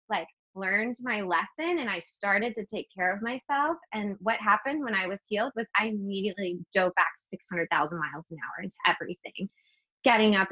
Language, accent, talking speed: English, American, 185 wpm